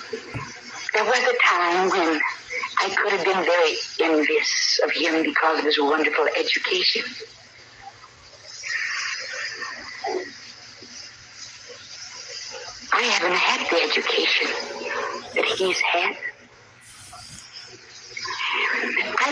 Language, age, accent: English, 50-69, American